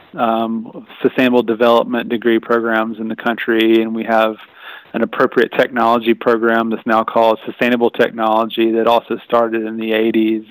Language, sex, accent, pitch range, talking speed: English, male, American, 115-125 Hz, 150 wpm